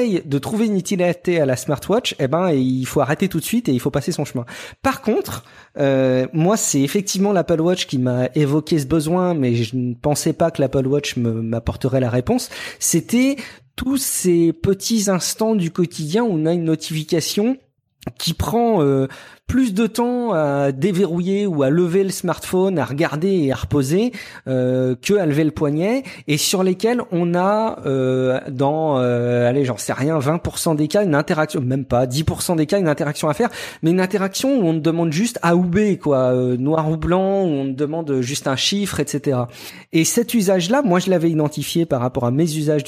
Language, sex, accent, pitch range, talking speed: French, male, French, 135-190 Hz, 200 wpm